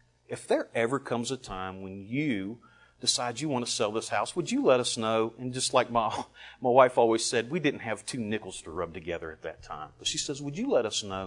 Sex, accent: male, American